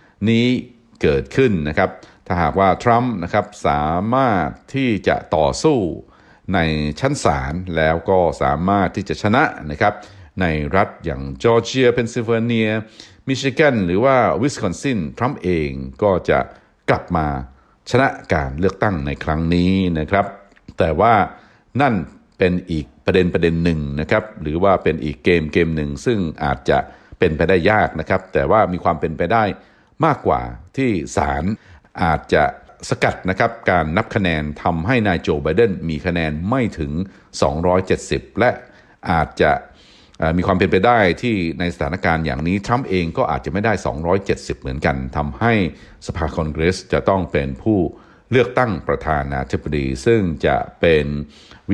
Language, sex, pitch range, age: Thai, male, 75-105 Hz, 60-79